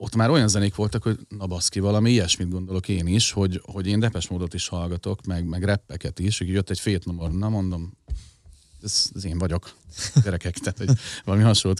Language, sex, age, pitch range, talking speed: Hungarian, male, 40-59, 85-105 Hz, 190 wpm